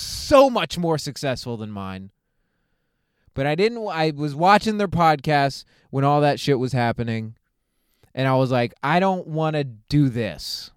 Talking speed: 165 wpm